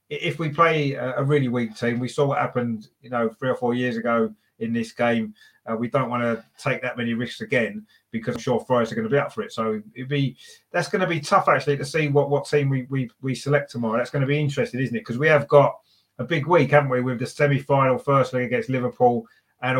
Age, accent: 30-49, British